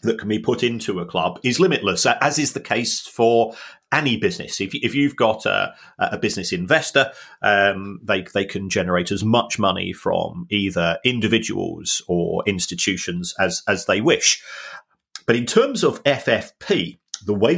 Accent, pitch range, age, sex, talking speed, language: British, 90-120 Hz, 40-59, male, 165 wpm, English